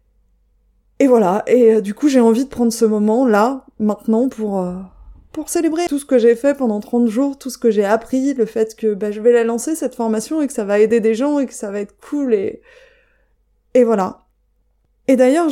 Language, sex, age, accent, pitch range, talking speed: French, female, 20-39, French, 220-275 Hz, 225 wpm